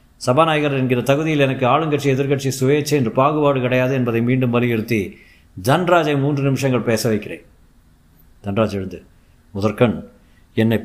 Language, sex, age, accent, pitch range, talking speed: Tamil, male, 50-69, native, 105-135 Hz, 120 wpm